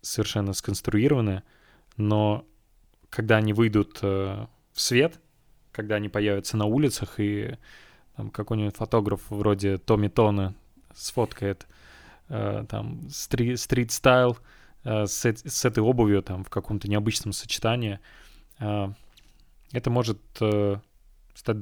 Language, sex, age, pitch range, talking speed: Russian, male, 20-39, 100-115 Hz, 110 wpm